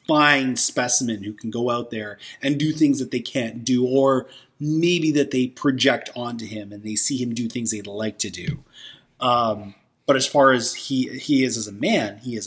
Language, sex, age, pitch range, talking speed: English, male, 30-49, 125-180 Hz, 210 wpm